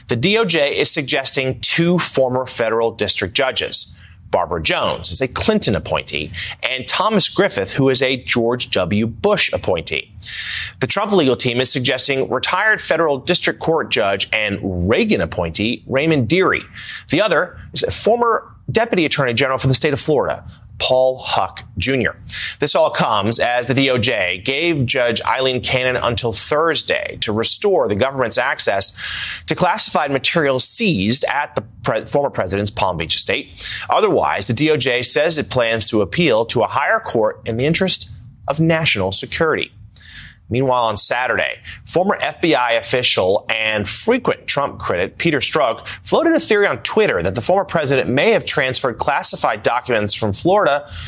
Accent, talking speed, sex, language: American, 155 wpm, male, English